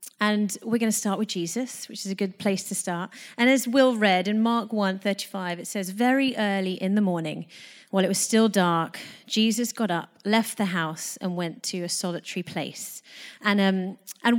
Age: 30-49